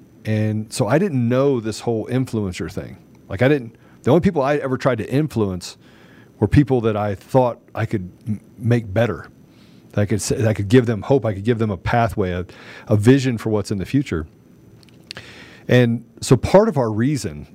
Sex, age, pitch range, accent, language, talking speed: male, 40-59, 110-135 Hz, American, English, 190 wpm